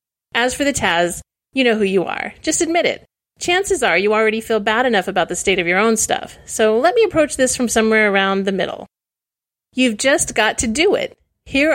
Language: English